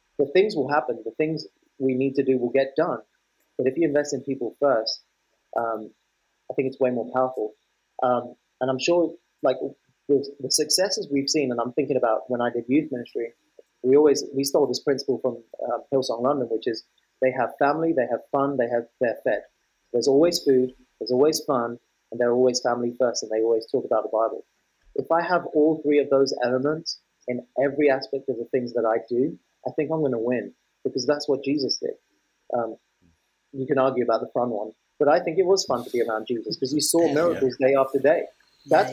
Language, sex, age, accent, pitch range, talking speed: English, male, 30-49, British, 125-155 Hz, 215 wpm